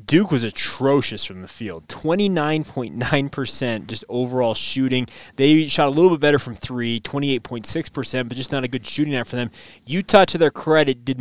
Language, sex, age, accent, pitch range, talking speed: English, male, 20-39, American, 125-150 Hz, 175 wpm